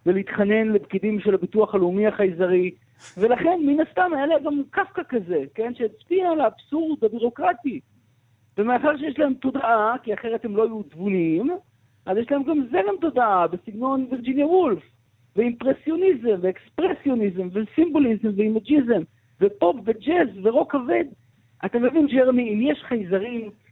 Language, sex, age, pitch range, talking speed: Hebrew, male, 50-69, 160-260 Hz, 130 wpm